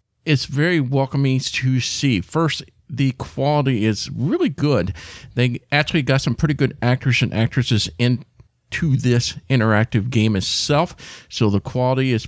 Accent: American